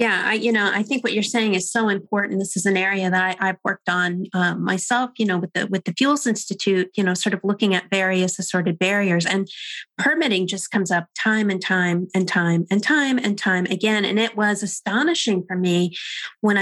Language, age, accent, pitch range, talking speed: English, 30-49, American, 185-220 Hz, 225 wpm